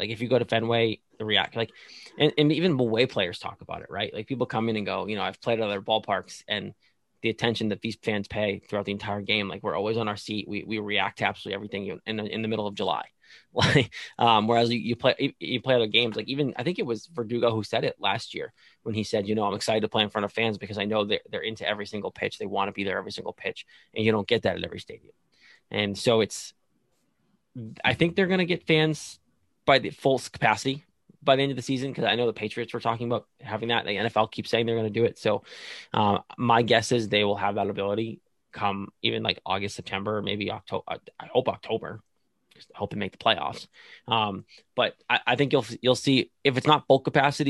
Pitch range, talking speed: 105-125 Hz, 255 wpm